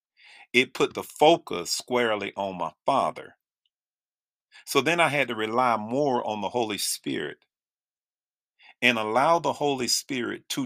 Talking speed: 140 wpm